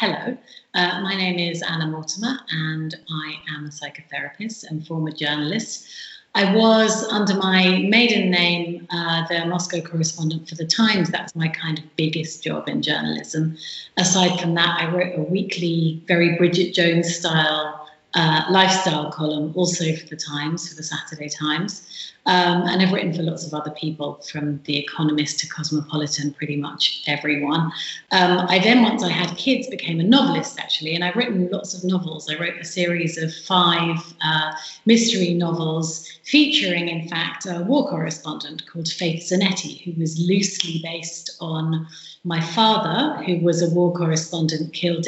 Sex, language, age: female, English, 30-49